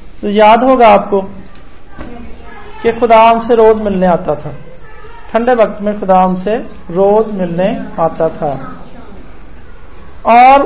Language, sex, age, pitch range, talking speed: Hindi, male, 40-59, 185-235 Hz, 105 wpm